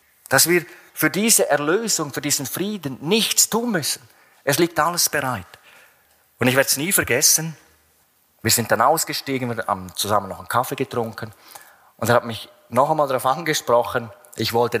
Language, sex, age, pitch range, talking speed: German, male, 30-49, 115-155 Hz, 170 wpm